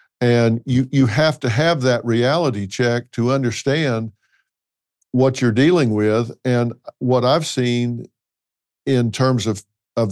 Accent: American